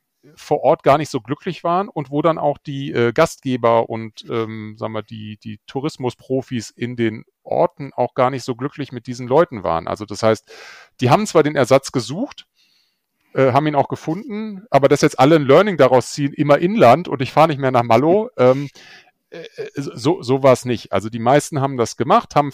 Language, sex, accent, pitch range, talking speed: German, male, German, 115-140 Hz, 210 wpm